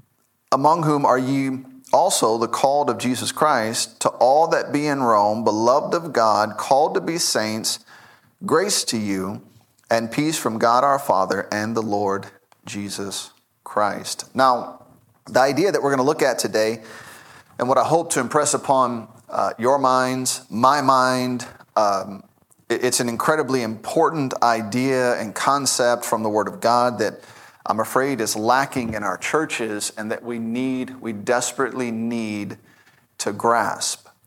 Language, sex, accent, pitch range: English, male, American, 110-135 Hz